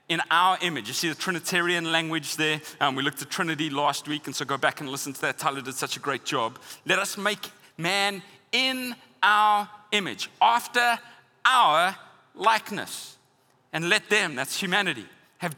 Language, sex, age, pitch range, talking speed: English, male, 30-49, 160-205 Hz, 170 wpm